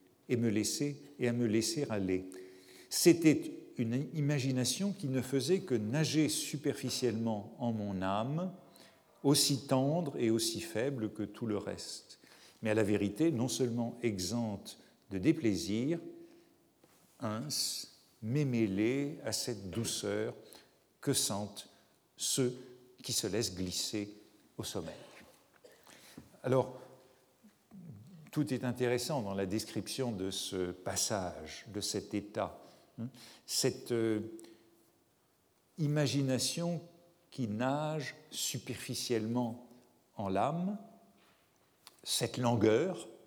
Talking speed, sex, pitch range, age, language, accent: 105 wpm, male, 110-145 Hz, 50-69, French, French